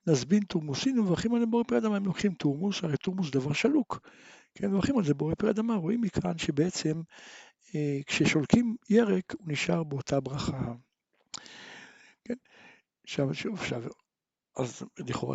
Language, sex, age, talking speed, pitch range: Hebrew, male, 60-79, 125 wpm, 150-210 Hz